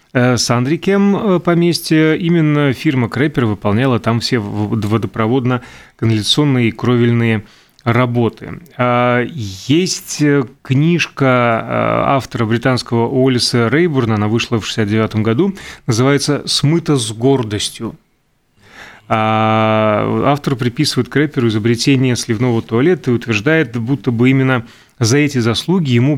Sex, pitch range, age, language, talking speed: male, 120-150 Hz, 30-49, Russian, 95 wpm